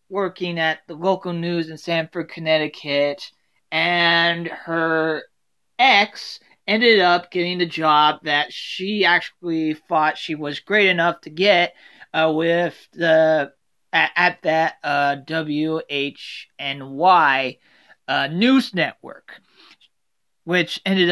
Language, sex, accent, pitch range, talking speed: English, male, American, 155-190 Hz, 110 wpm